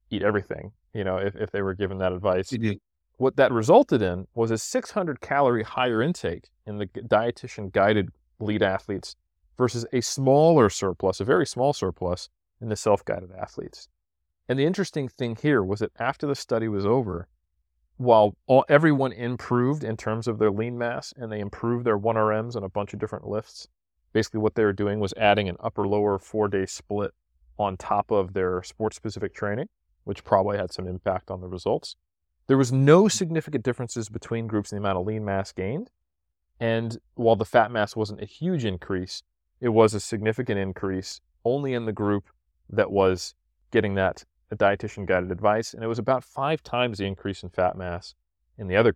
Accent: American